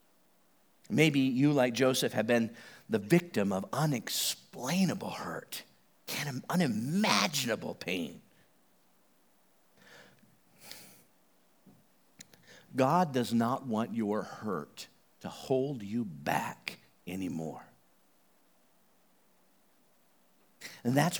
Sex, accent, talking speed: male, American, 75 wpm